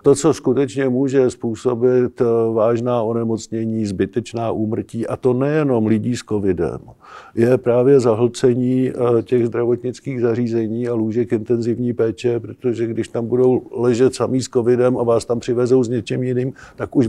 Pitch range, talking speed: 110-125 Hz, 150 wpm